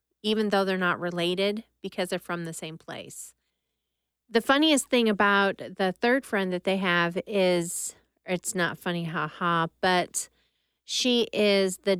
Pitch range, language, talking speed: 180-220 Hz, English, 150 wpm